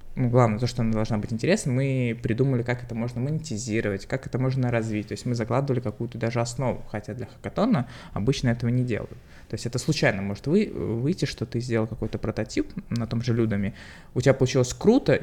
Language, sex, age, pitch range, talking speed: Russian, male, 20-39, 115-140 Hz, 200 wpm